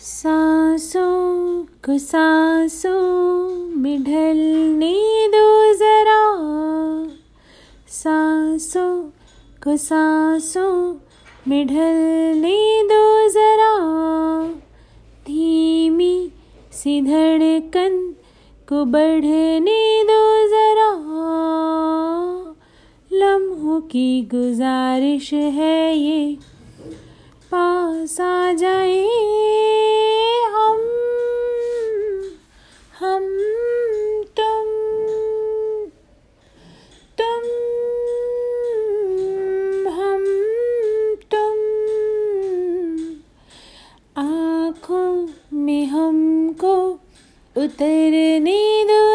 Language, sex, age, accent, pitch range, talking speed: Hindi, female, 30-49, native, 315-430 Hz, 45 wpm